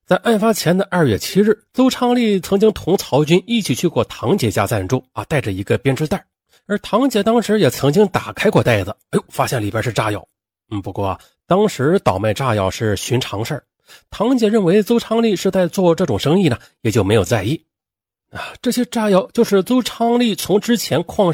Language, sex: Chinese, male